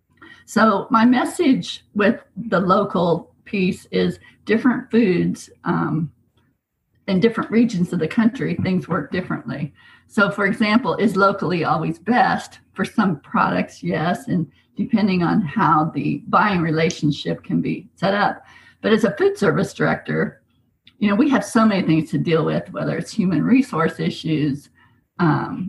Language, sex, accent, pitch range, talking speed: English, female, American, 165-220 Hz, 150 wpm